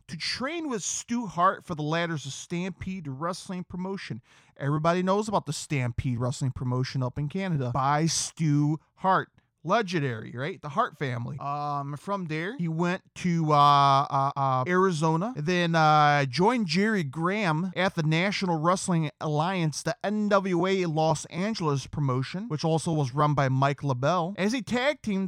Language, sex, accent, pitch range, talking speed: English, male, American, 145-195 Hz, 155 wpm